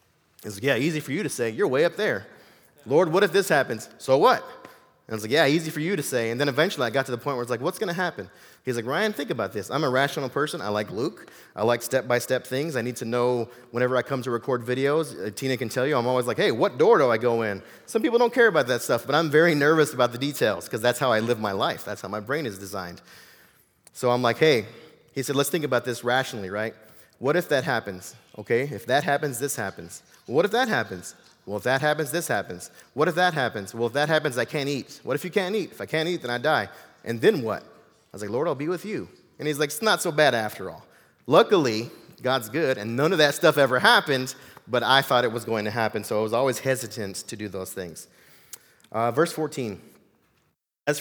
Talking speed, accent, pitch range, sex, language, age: 255 wpm, American, 115-150 Hz, male, English, 30-49